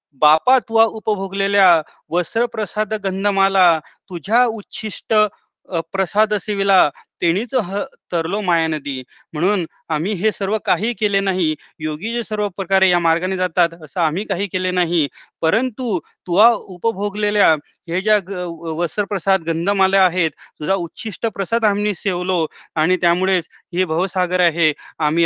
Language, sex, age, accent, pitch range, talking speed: Marathi, male, 30-49, native, 170-215 Hz, 120 wpm